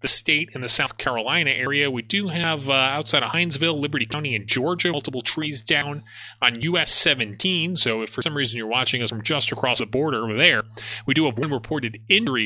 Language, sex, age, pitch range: English, male, 30-49, 110-145 Hz